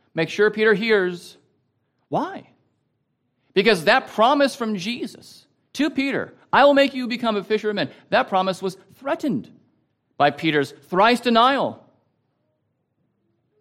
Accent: American